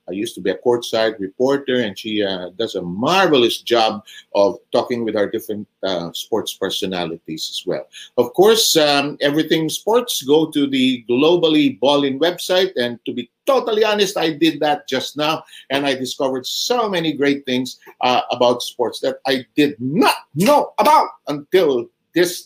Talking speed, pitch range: 170 wpm, 125-175 Hz